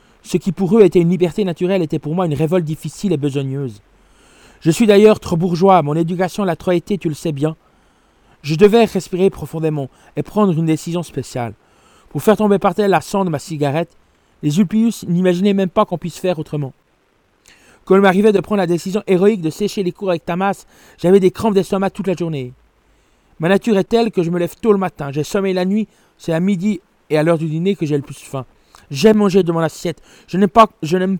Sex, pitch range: male, 155-195 Hz